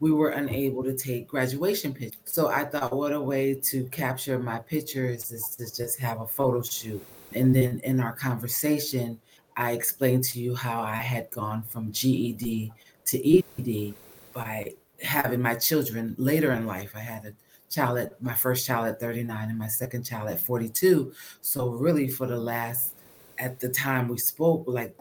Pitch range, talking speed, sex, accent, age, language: 120-140 Hz, 180 wpm, female, American, 30-49, English